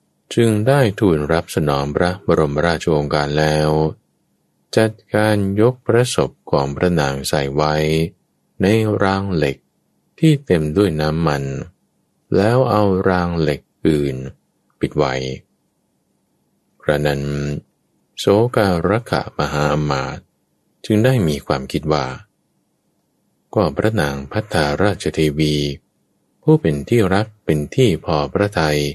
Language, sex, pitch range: English, male, 75-105 Hz